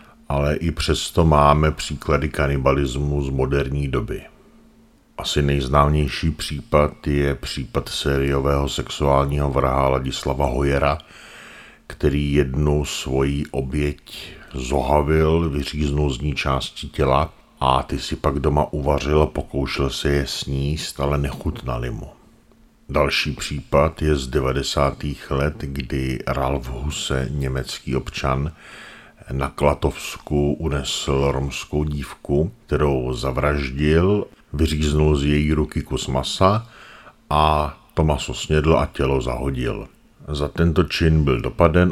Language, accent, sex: Czech, native, male